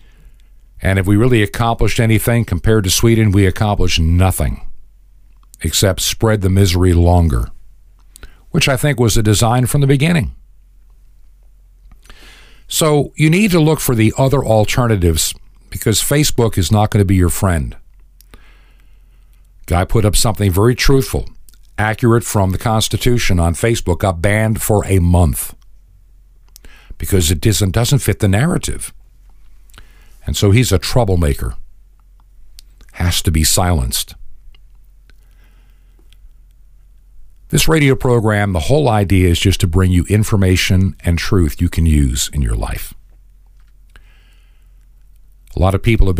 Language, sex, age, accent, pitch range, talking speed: English, male, 50-69, American, 90-110 Hz, 130 wpm